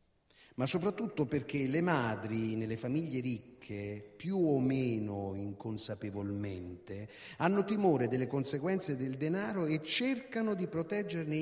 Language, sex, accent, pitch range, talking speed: Italian, male, native, 125-170 Hz, 115 wpm